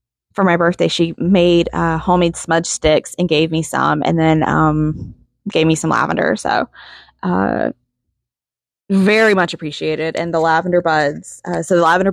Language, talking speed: English, 165 wpm